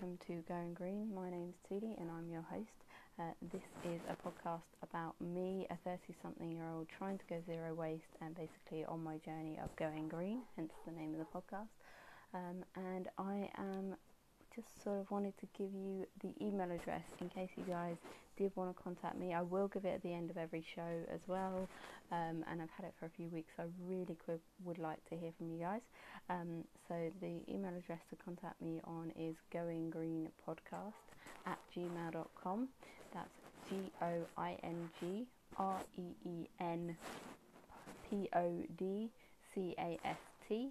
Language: English